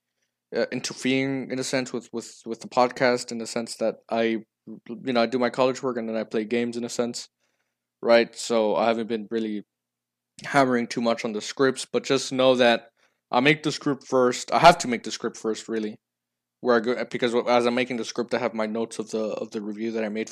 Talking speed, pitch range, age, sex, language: 235 wpm, 110-130 Hz, 20-39, male, English